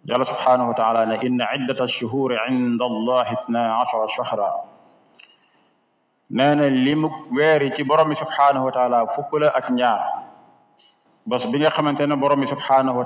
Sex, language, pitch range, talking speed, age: male, French, 115-140 Hz, 70 wpm, 50-69